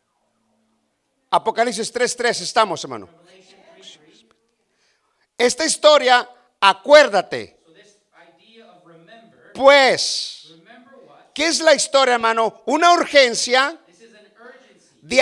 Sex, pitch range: male, 240-305 Hz